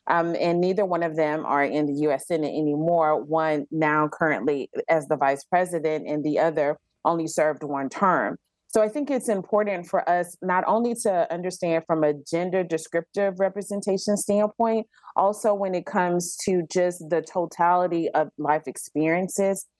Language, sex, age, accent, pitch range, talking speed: English, female, 30-49, American, 160-195 Hz, 165 wpm